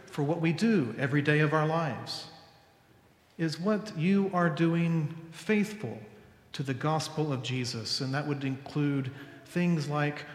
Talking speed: 150 wpm